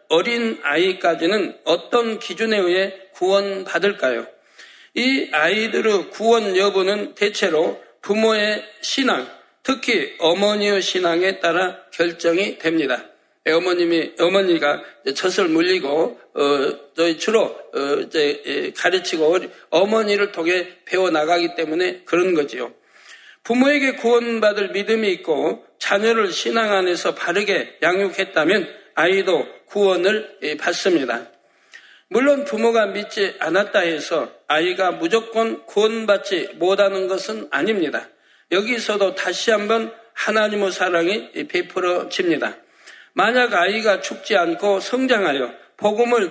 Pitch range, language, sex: 185-225 Hz, Korean, male